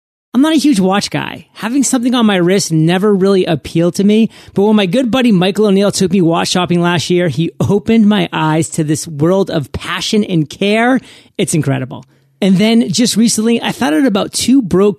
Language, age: English, 30-49